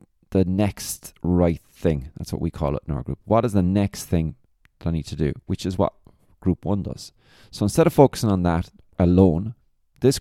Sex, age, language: male, 20-39, English